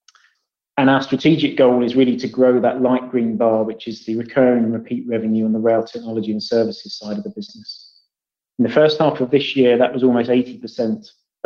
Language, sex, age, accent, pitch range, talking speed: English, male, 30-49, British, 115-135 Hz, 210 wpm